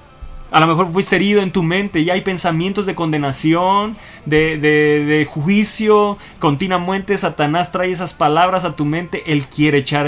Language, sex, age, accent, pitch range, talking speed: Portuguese, male, 30-49, Mexican, 140-185 Hz, 160 wpm